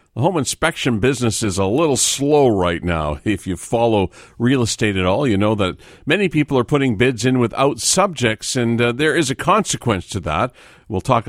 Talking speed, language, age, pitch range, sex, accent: 200 wpm, English, 50-69, 95-130 Hz, male, American